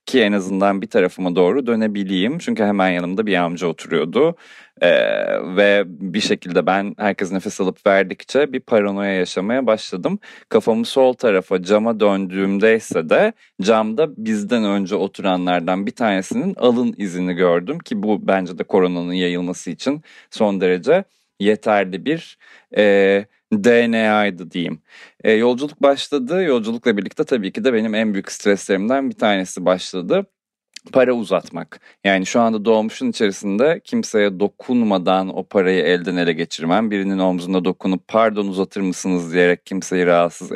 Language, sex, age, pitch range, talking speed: Turkish, male, 30-49, 95-115 Hz, 135 wpm